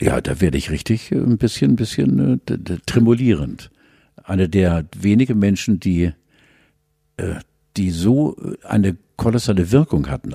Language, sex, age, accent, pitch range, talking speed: German, male, 60-79, German, 95-120 Hz, 135 wpm